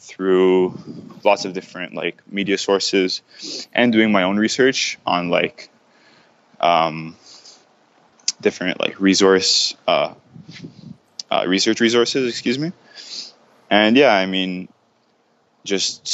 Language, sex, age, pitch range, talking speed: English, male, 20-39, 95-110 Hz, 110 wpm